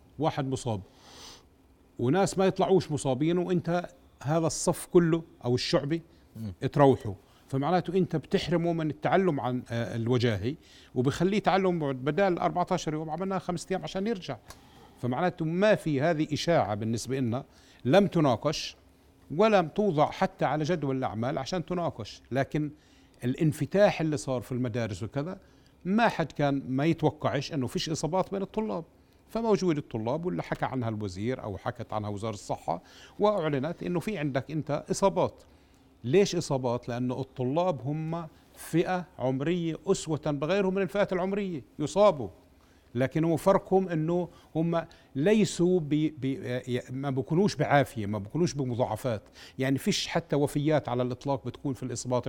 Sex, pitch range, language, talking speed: male, 125-175 Hz, Arabic, 135 wpm